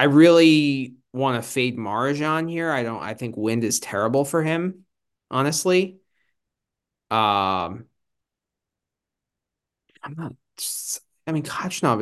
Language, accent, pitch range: English, American, 120-160 Hz